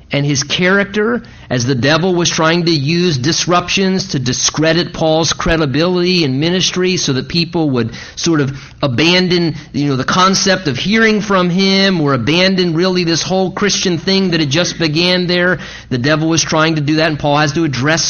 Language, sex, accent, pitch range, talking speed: English, male, American, 135-170 Hz, 185 wpm